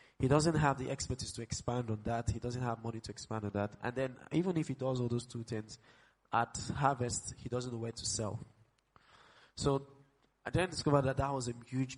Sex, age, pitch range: male, 20-39, 115-130 Hz